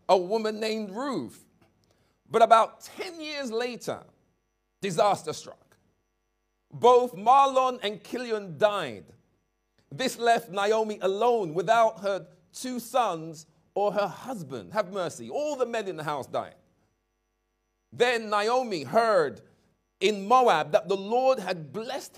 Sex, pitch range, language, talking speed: male, 175-245 Hz, English, 125 wpm